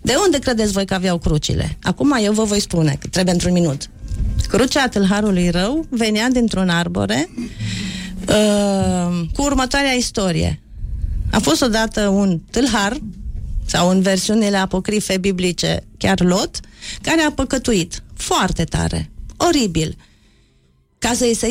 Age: 40-59